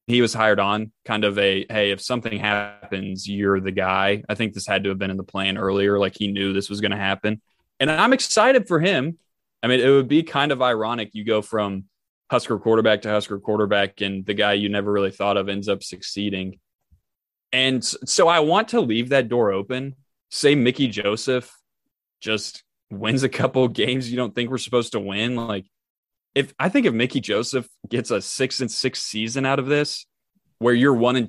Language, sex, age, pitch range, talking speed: English, male, 20-39, 100-125 Hz, 210 wpm